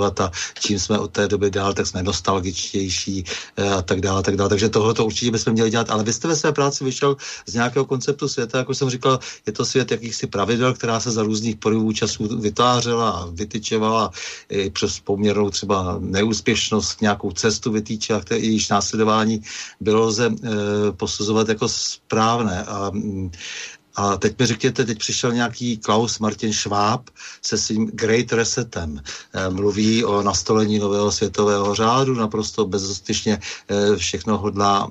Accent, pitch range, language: native, 100-110 Hz, Czech